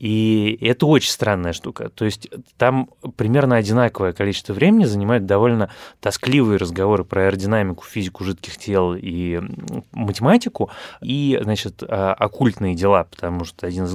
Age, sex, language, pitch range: 20-39, male, Russian, 95-120 Hz